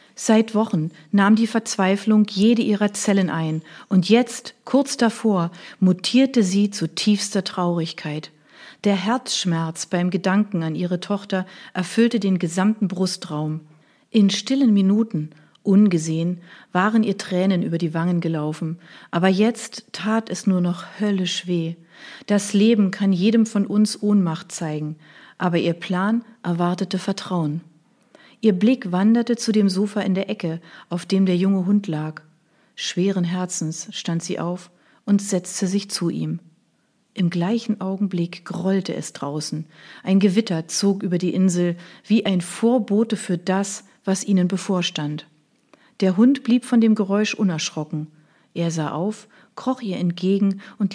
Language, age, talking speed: German, 40-59, 140 wpm